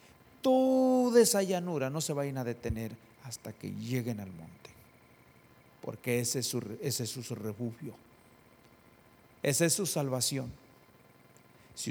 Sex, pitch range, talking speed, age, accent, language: male, 115-130 Hz, 130 wpm, 50-69, Mexican, English